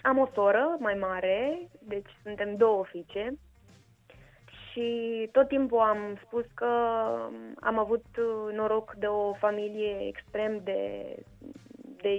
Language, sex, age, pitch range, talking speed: Romanian, female, 20-39, 205-250 Hz, 120 wpm